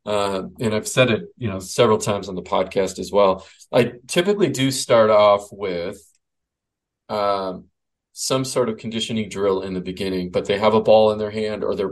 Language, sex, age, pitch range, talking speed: English, male, 40-59, 95-125 Hz, 195 wpm